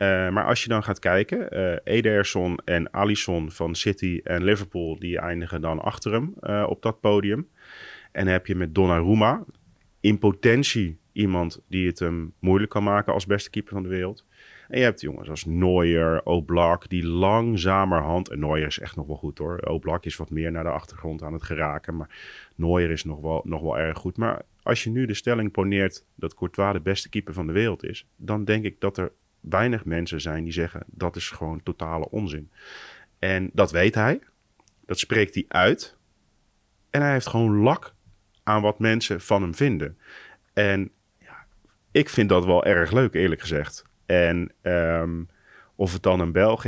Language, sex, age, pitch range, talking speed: Dutch, male, 30-49, 85-105 Hz, 190 wpm